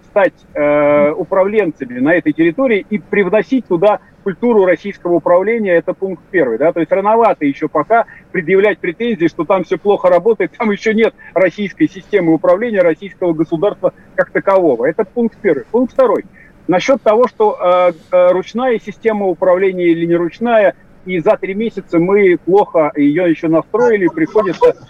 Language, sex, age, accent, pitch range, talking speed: Russian, male, 40-59, native, 175-225 Hz, 150 wpm